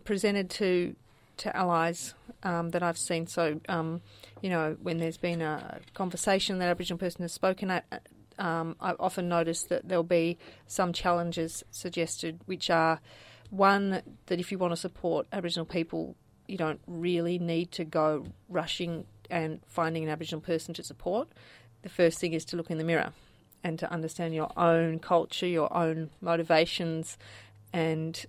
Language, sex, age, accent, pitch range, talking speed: English, female, 40-59, Australian, 160-180 Hz, 165 wpm